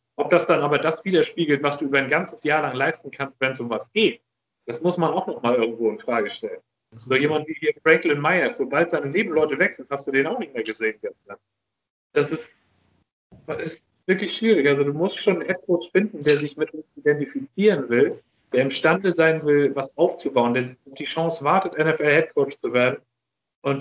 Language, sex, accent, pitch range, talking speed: German, male, German, 145-180 Hz, 205 wpm